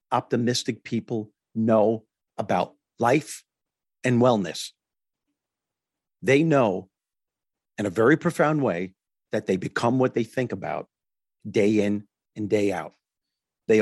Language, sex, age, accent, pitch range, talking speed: English, male, 50-69, American, 105-140 Hz, 115 wpm